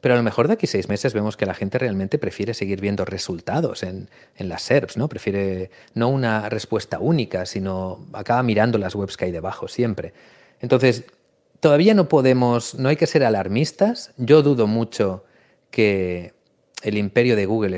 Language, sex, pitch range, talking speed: Spanish, male, 95-125 Hz, 180 wpm